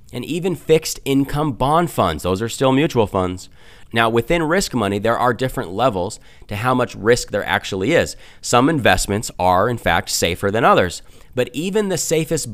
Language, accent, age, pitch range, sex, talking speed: English, American, 30-49, 100-140 Hz, male, 180 wpm